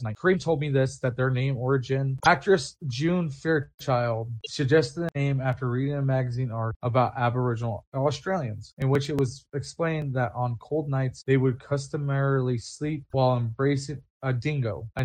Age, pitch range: 20-39, 120-140 Hz